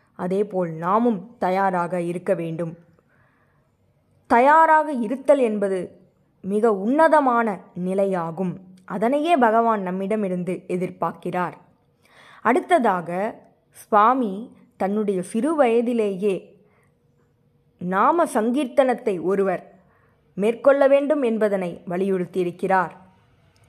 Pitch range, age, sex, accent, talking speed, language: 185-245 Hz, 20-39, female, native, 70 wpm, Tamil